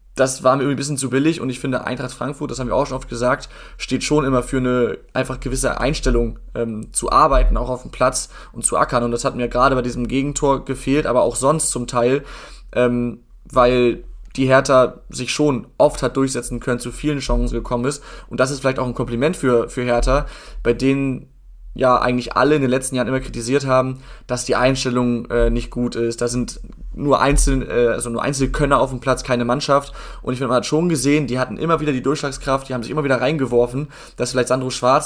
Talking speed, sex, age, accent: 225 wpm, male, 20-39, German